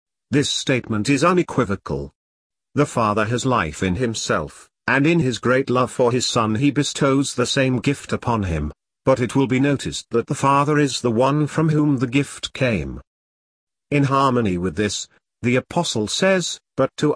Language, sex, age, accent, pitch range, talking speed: English, male, 50-69, British, 105-140 Hz, 175 wpm